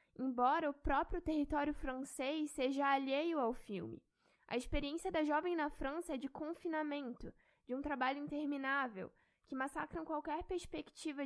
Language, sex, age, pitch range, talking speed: Portuguese, female, 10-29, 260-315 Hz, 140 wpm